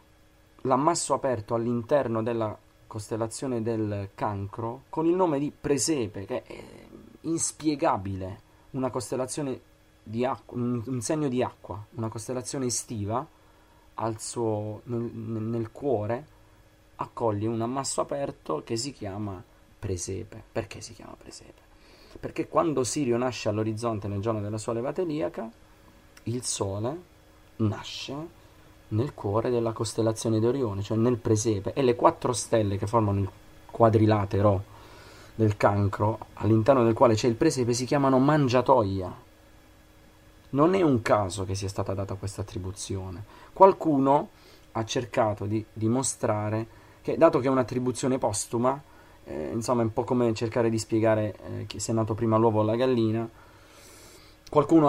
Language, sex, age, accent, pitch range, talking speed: Italian, male, 30-49, native, 105-125 Hz, 135 wpm